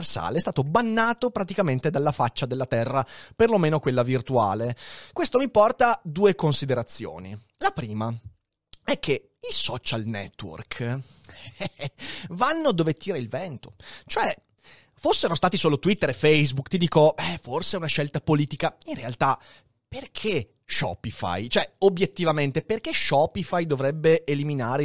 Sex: male